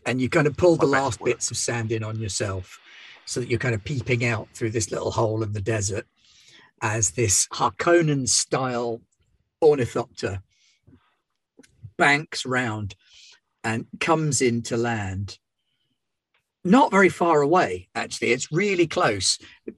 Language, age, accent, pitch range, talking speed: English, 40-59, British, 110-140 Hz, 145 wpm